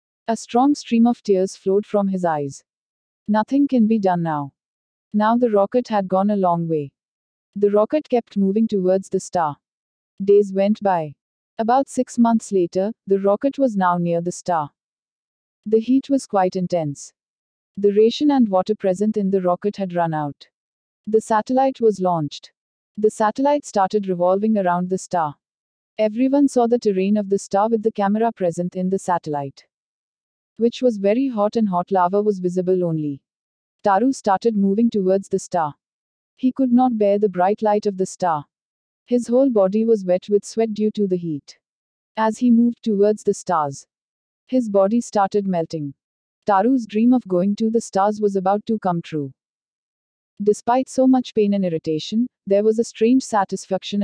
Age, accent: 40-59, native